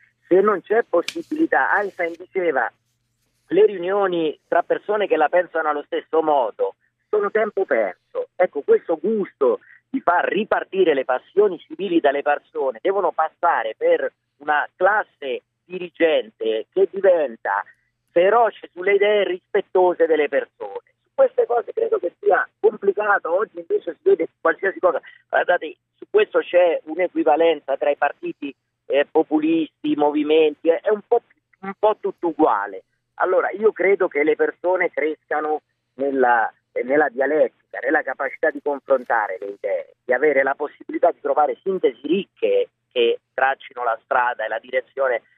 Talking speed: 140 wpm